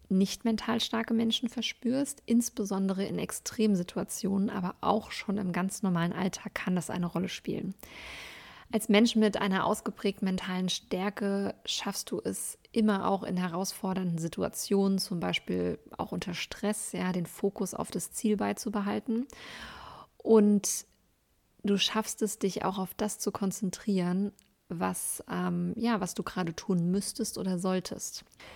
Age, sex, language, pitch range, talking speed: 20-39, female, German, 175-205 Hz, 140 wpm